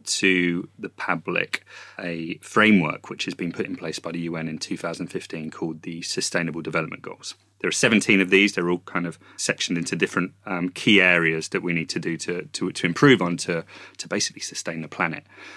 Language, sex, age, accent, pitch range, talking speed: English, male, 30-49, British, 85-95 Hz, 200 wpm